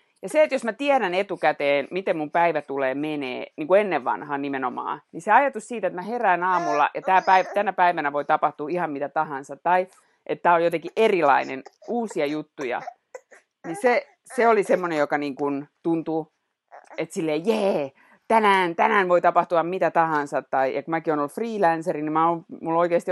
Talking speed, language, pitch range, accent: 175 wpm, Finnish, 150-200 Hz, native